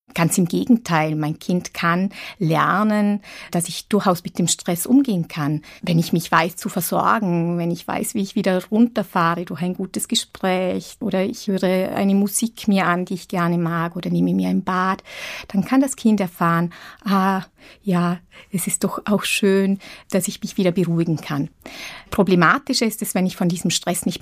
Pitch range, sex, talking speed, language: 180-215 Hz, female, 185 wpm, German